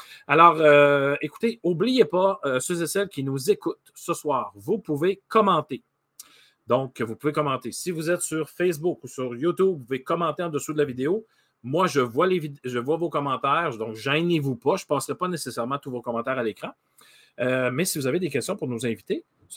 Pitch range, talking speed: 120-160 Hz, 220 wpm